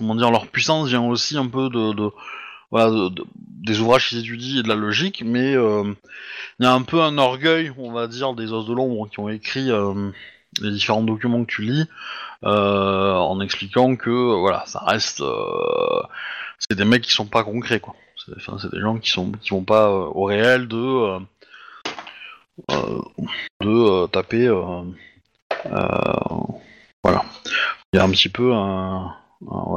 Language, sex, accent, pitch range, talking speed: French, male, French, 100-140 Hz, 185 wpm